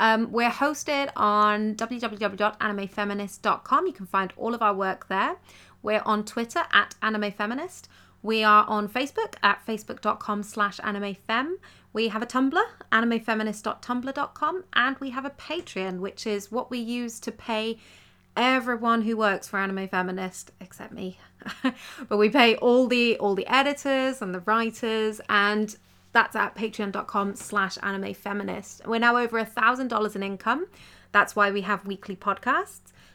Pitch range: 195-240 Hz